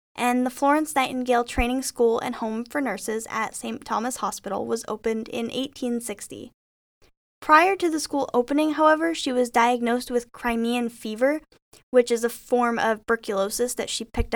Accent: American